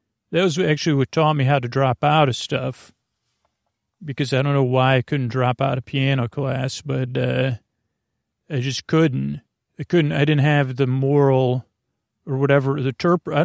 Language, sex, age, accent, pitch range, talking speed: English, male, 40-59, American, 130-150 Hz, 185 wpm